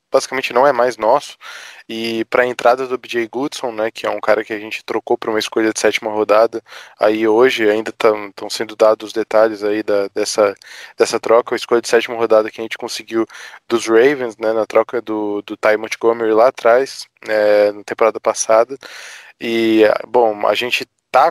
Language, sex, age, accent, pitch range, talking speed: Portuguese, male, 20-39, Brazilian, 110-125 Hz, 195 wpm